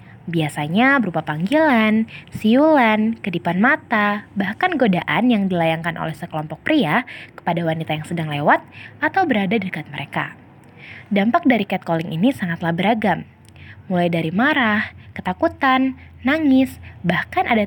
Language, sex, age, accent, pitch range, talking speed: Indonesian, female, 20-39, native, 155-245 Hz, 120 wpm